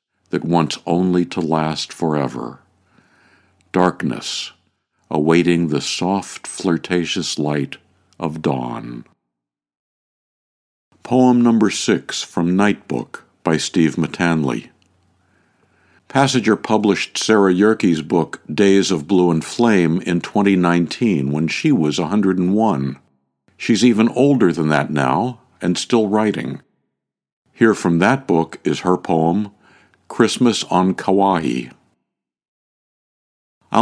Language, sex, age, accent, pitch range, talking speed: English, male, 60-79, American, 80-105 Hz, 105 wpm